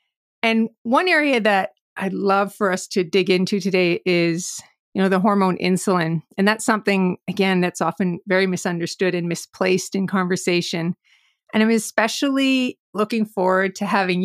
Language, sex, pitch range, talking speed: English, female, 185-225 Hz, 155 wpm